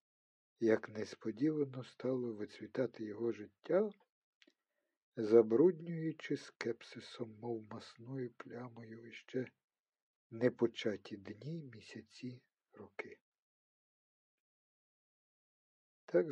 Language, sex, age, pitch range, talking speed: Ukrainian, male, 50-69, 115-135 Hz, 65 wpm